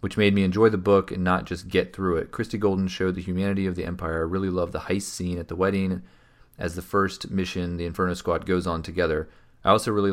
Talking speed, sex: 250 wpm, male